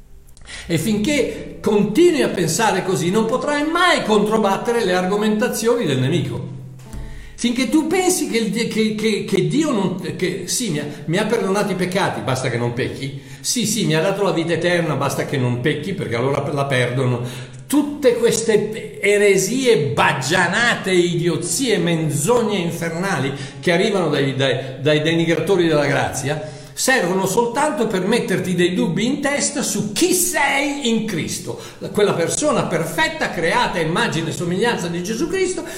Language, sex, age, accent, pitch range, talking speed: Italian, male, 60-79, native, 140-225 Hz, 150 wpm